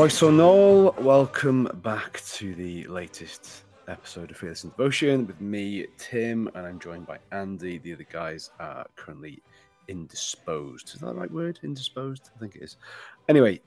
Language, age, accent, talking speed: English, 30-49, British, 170 wpm